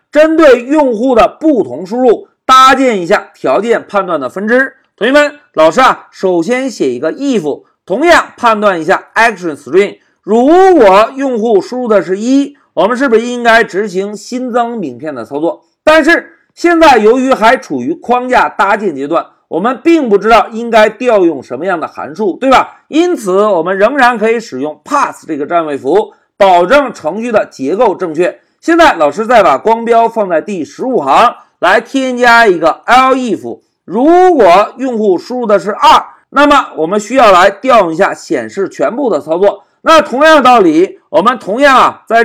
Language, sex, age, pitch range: Chinese, male, 50-69, 215-310 Hz